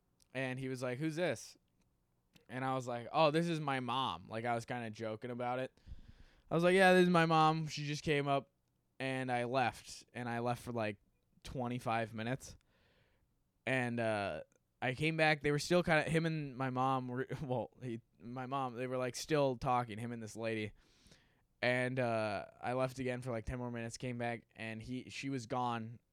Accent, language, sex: American, English, male